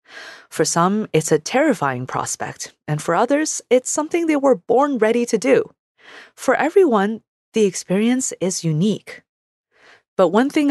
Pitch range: 160-245 Hz